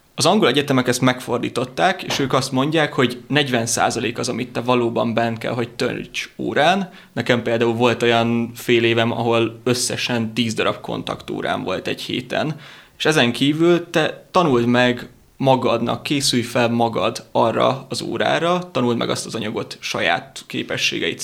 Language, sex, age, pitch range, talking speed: Hungarian, male, 20-39, 115-135 Hz, 155 wpm